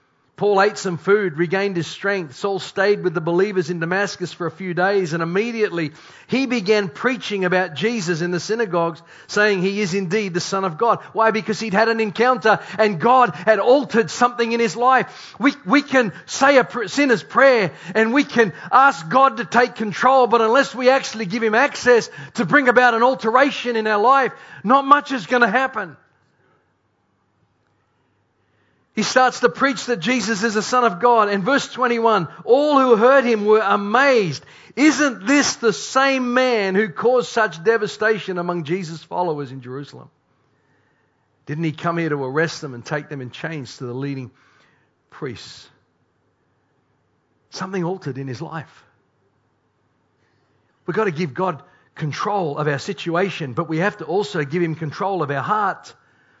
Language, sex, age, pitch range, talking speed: English, male, 40-59, 165-235 Hz, 170 wpm